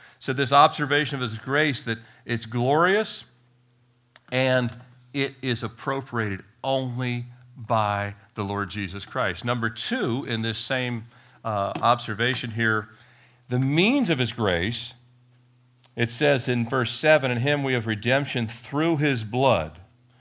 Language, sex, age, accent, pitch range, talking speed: English, male, 50-69, American, 120-150 Hz, 135 wpm